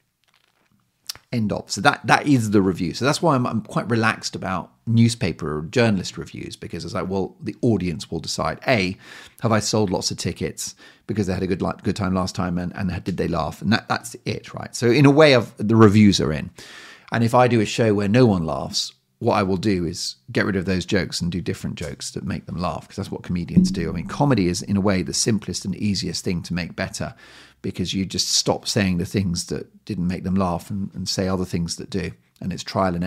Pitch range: 90-115 Hz